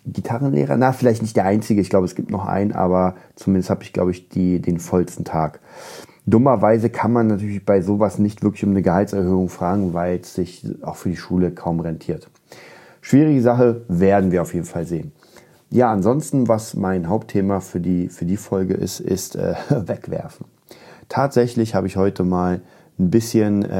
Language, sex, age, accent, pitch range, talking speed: German, male, 30-49, German, 90-110 Hz, 175 wpm